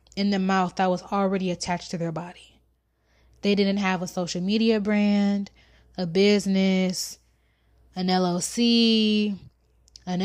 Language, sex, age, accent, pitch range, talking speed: English, female, 20-39, American, 190-235 Hz, 130 wpm